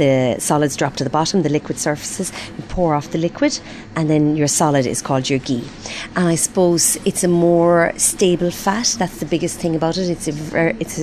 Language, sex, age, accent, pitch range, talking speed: English, female, 40-59, Irish, 145-180 Hz, 200 wpm